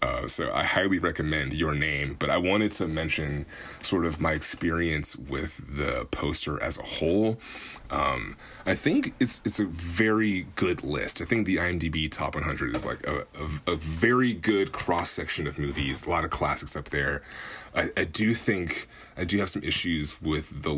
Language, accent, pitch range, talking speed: English, American, 75-95 Hz, 185 wpm